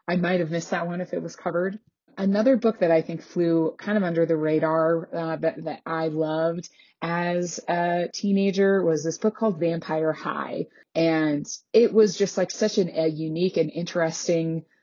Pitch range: 160-190 Hz